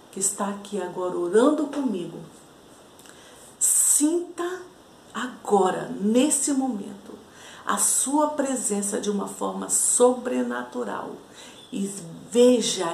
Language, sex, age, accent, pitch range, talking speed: Portuguese, female, 50-69, Brazilian, 180-230 Hz, 90 wpm